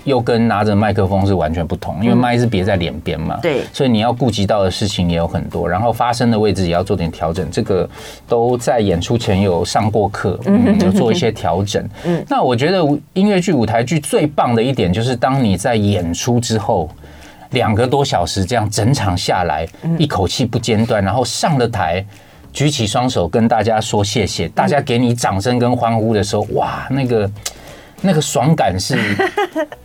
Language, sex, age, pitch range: Chinese, male, 30-49, 100-145 Hz